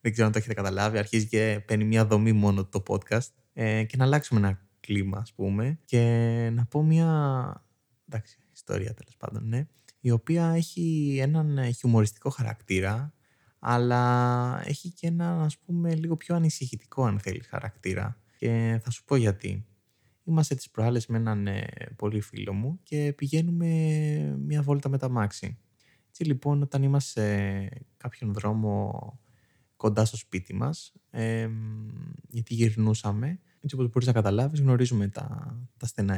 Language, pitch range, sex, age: Greek, 110-150 Hz, male, 20-39